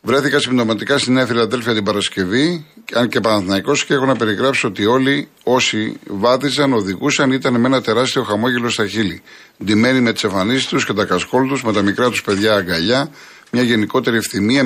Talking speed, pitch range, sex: 180 wpm, 105-130 Hz, male